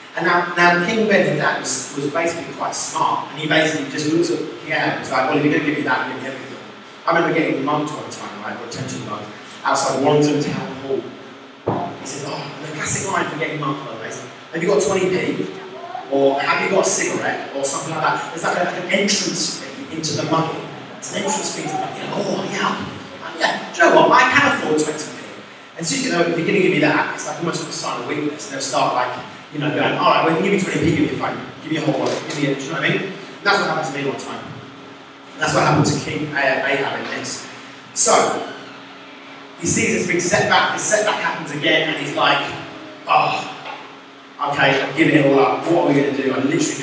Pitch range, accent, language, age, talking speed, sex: 140-180 Hz, British, English, 30-49, 255 wpm, male